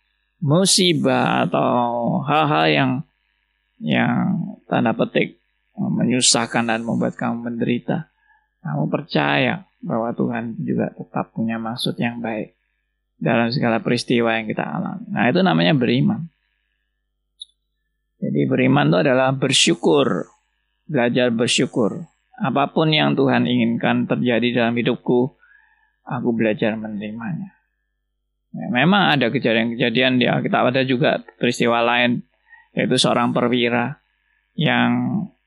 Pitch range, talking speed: 115-130 Hz, 110 wpm